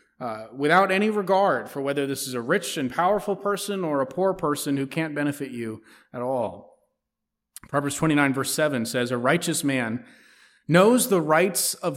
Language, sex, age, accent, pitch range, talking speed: English, male, 30-49, American, 130-175 Hz, 175 wpm